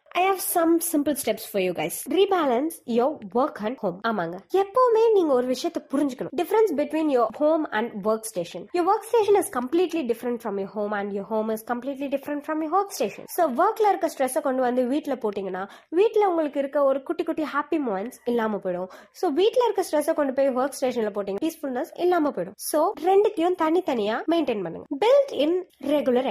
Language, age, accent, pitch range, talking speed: Tamil, 20-39, native, 215-335 Hz, 220 wpm